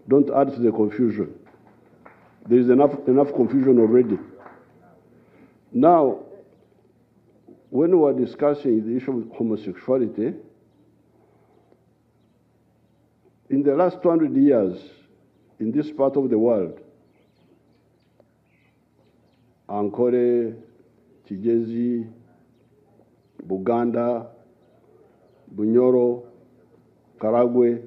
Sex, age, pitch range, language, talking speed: male, 60-79, 120-155 Hz, English, 80 wpm